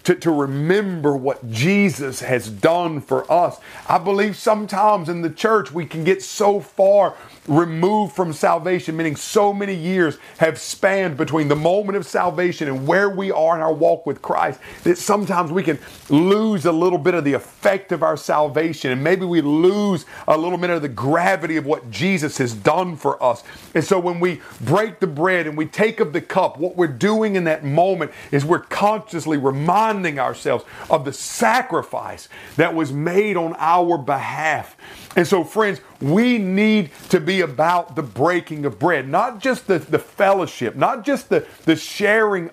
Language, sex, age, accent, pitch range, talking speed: English, male, 40-59, American, 155-200 Hz, 180 wpm